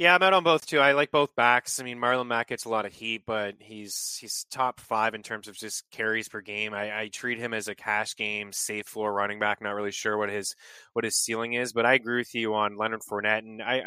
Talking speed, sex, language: 270 wpm, male, English